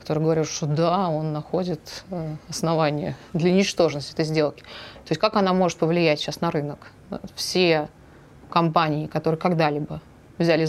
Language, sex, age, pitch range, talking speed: Russian, female, 20-39, 160-205 Hz, 140 wpm